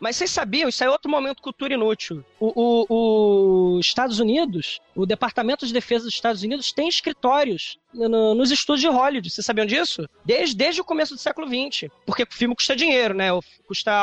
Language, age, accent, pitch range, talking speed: Portuguese, 20-39, Brazilian, 200-275 Hz, 185 wpm